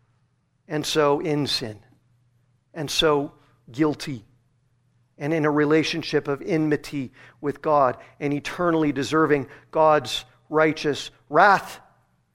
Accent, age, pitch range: American, 50-69, 140-185 Hz